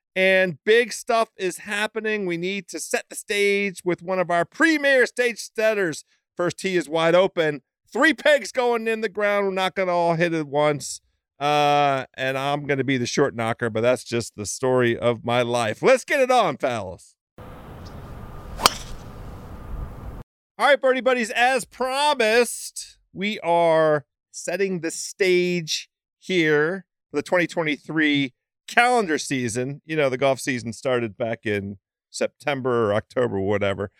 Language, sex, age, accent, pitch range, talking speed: English, male, 40-59, American, 130-195 Hz, 155 wpm